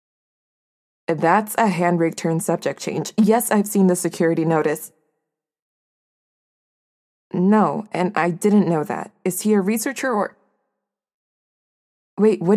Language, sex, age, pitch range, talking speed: English, female, 20-39, 165-200 Hz, 120 wpm